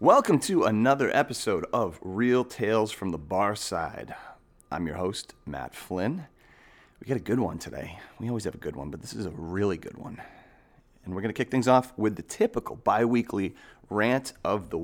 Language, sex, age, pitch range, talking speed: English, male, 30-49, 90-125 Hz, 200 wpm